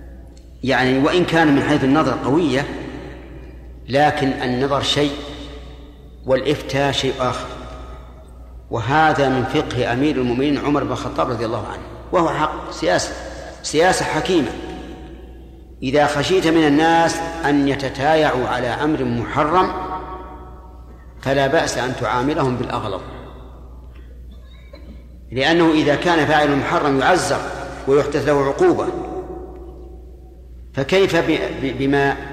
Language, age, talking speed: Arabic, 50-69, 100 wpm